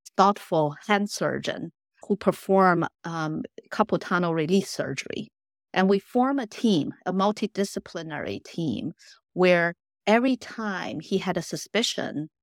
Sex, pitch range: female, 170-225 Hz